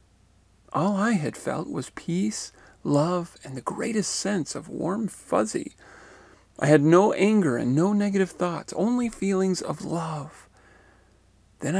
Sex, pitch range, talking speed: male, 100-160 Hz, 135 wpm